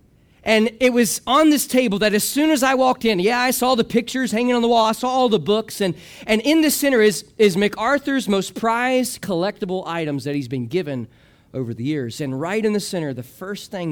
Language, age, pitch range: English, 40-59, 130-205 Hz